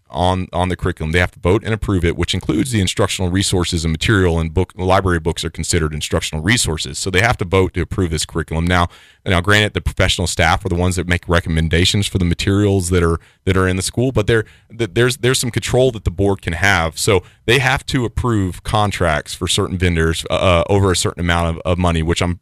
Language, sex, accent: English, male, American